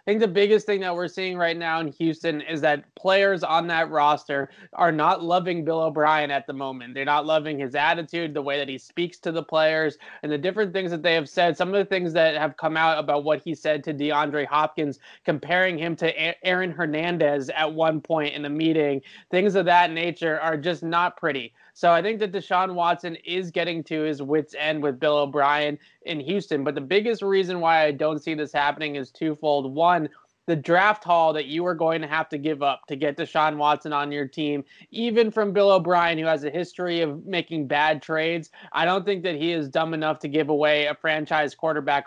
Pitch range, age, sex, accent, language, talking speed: 150-175 Hz, 20-39, male, American, English, 220 wpm